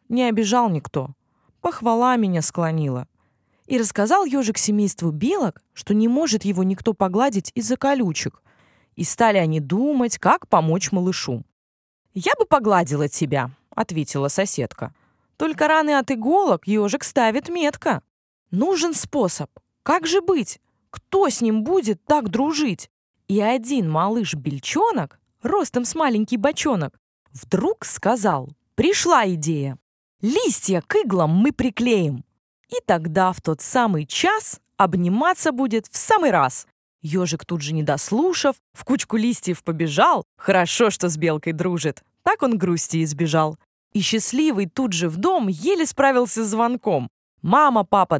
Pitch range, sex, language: 170-270 Hz, female, Russian